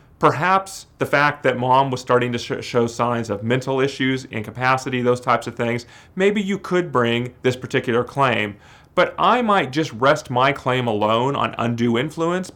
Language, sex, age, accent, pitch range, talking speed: English, male, 30-49, American, 115-135 Hz, 170 wpm